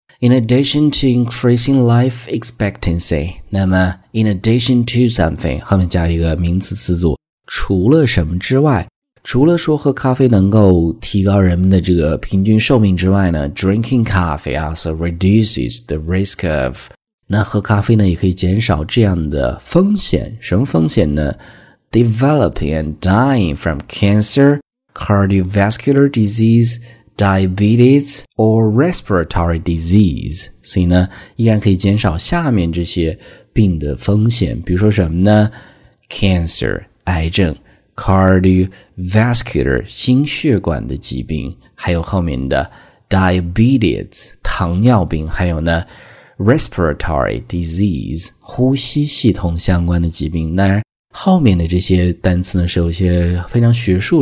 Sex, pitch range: male, 85-115 Hz